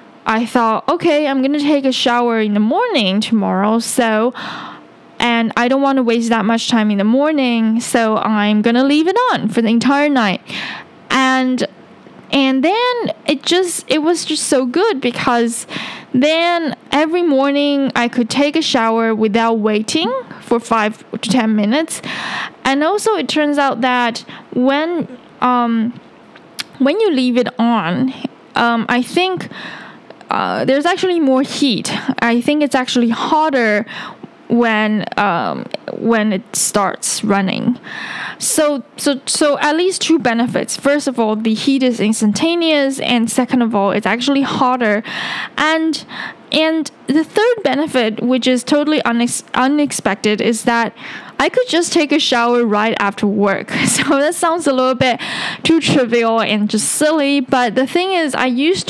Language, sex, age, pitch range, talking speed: English, female, 10-29, 230-290 Hz, 155 wpm